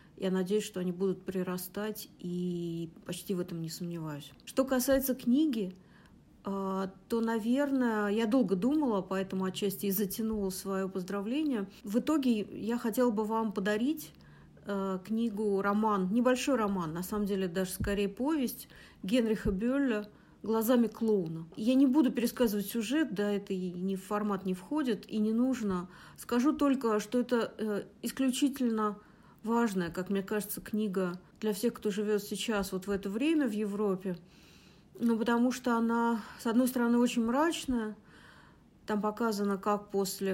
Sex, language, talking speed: female, Russian, 145 wpm